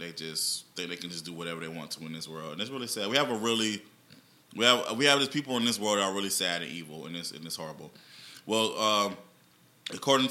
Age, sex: 20-39, male